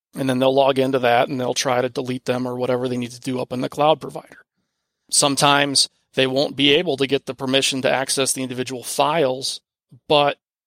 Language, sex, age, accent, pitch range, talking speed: English, male, 30-49, American, 130-145 Hz, 215 wpm